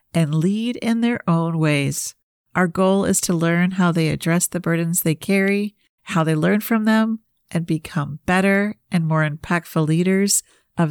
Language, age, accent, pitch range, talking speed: English, 50-69, American, 160-200 Hz, 170 wpm